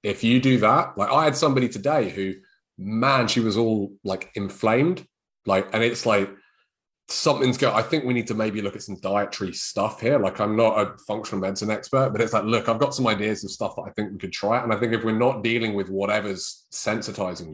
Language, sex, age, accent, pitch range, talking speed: English, male, 30-49, British, 100-130 Hz, 230 wpm